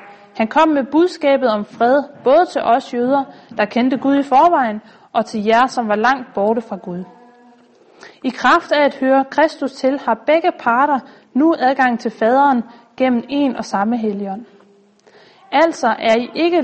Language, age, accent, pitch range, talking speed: Danish, 30-49, native, 220-270 Hz, 170 wpm